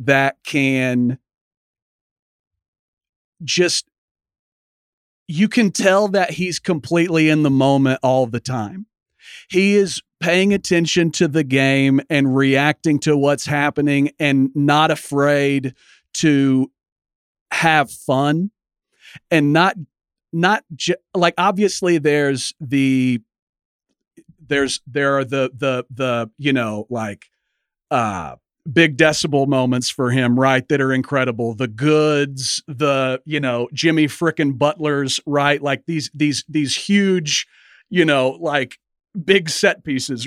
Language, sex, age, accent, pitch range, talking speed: English, male, 40-59, American, 135-170 Hz, 120 wpm